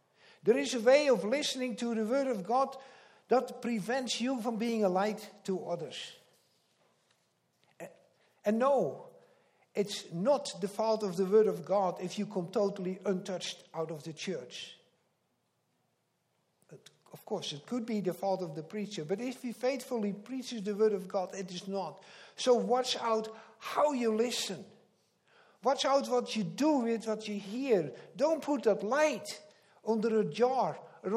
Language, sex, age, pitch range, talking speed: English, male, 60-79, 200-265 Hz, 165 wpm